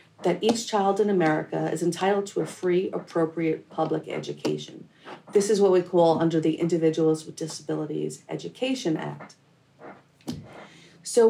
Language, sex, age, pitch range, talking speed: English, female, 40-59, 170-240 Hz, 140 wpm